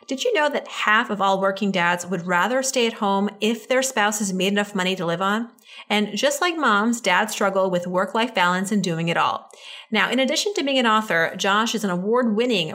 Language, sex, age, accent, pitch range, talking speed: English, female, 30-49, American, 190-245 Hz, 225 wpm